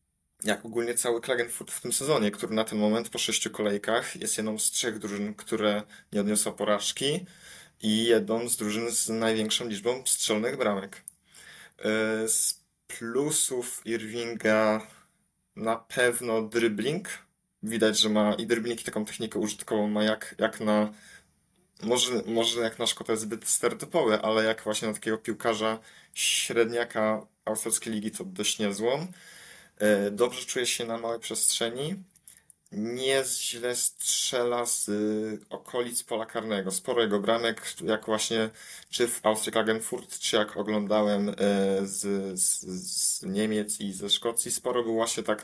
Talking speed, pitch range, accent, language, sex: 140 wpm, 105-120 Hz, native, Polish, male